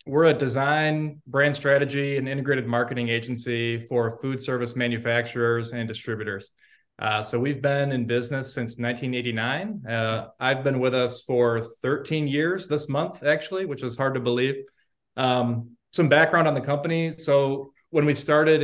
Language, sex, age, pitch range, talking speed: English, male, 20-39, 120-140 Hz, 160 wpm